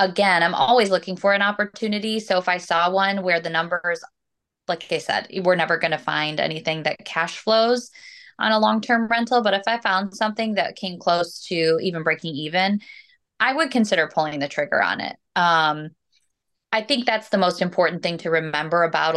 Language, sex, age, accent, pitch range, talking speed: English, female, 20-39, American, 165-200 Hz, 195 wpm